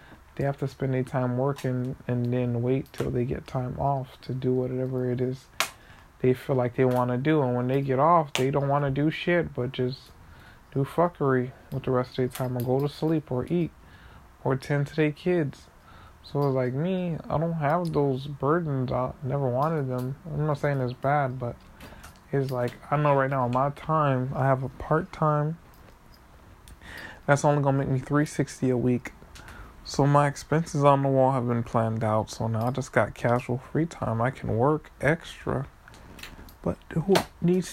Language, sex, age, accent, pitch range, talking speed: English, male, 20-39, American, 125-145 Hz, 195 wpm